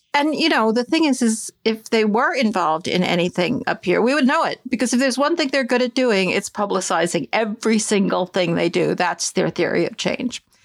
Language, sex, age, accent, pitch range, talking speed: English, female, 50-69, American, 190-250 Hz, 225 wpm